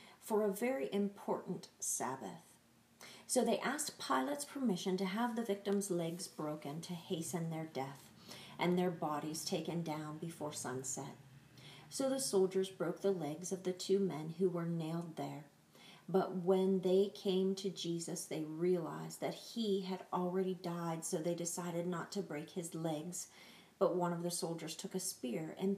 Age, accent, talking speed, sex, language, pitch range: 40-59, American, 165 wpm, female, English, 155-195 Hz